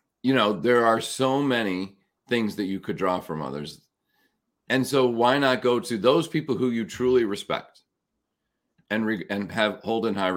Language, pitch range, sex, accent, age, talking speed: English, 95-125 Hz, male, American, 40-59, 185 wpm